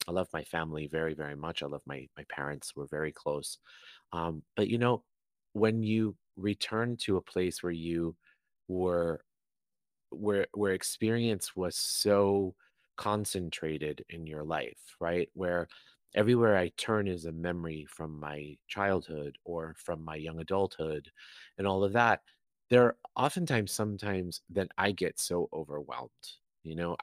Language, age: English, 30-49